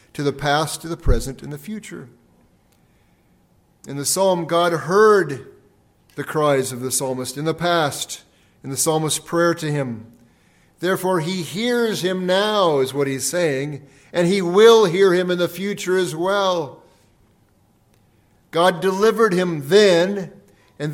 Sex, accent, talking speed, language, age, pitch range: male, American, 150 wpm, English, 50-69, 135-180 Hz